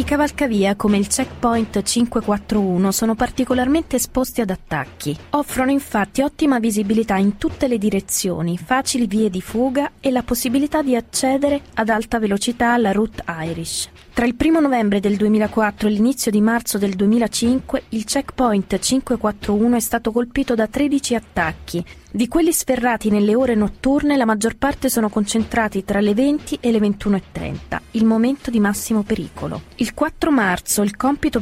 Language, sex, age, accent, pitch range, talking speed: Italian, female, 20-39, native, 200-255 Hz, 155 wpm